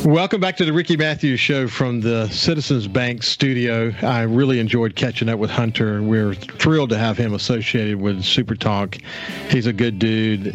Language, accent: English, American